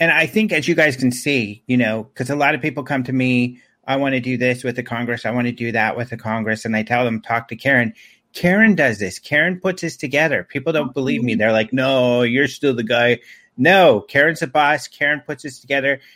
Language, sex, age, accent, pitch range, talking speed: English, male, 40-59, American, 120-145 Hz, 250 wpm